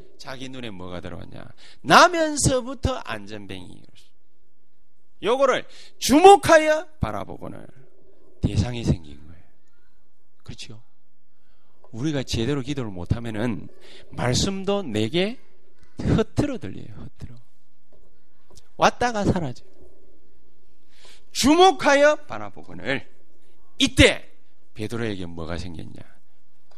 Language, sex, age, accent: Korean, male, 40-59, native